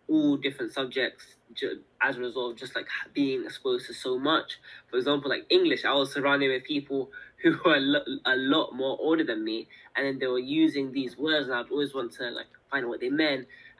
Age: 10-29